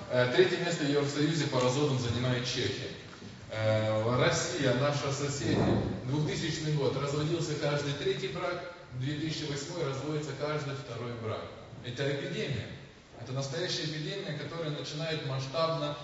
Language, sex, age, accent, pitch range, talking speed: Russian, male, 20-39, native, 130-160 Hz, 115 wpm